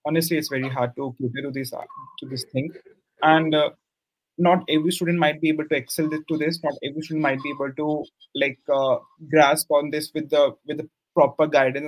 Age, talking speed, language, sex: 30-49, 205 wpm, English, male